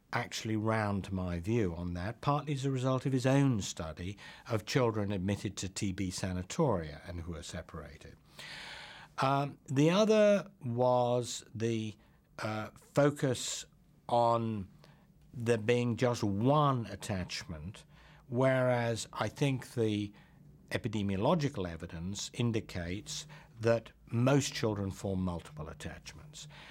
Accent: British